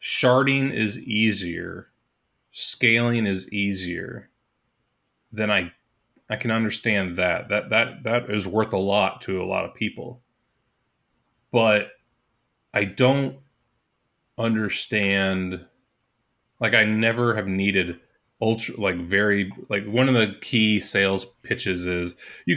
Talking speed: 120 wpm